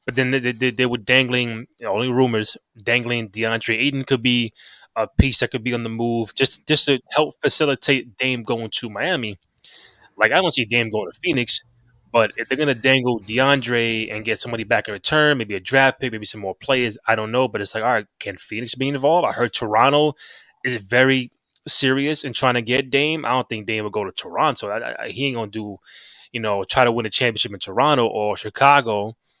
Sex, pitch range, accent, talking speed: male, 115-140 Hz, American, 220 wpm